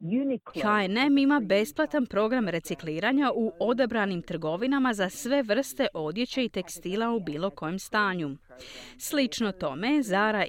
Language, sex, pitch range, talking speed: Croatian, female, 180-265 Hz, 120 wpm